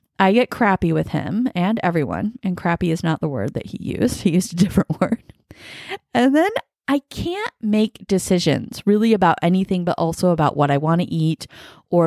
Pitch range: 150-195 Hz